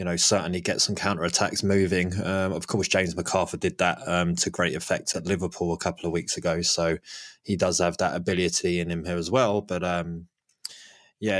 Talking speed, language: 205 wpm, English